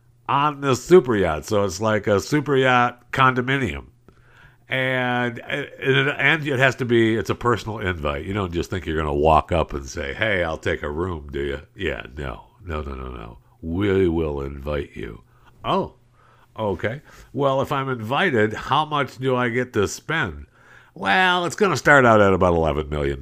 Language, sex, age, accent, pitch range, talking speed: English, male, 60-79, American, 85-125 Hz, 185 wpm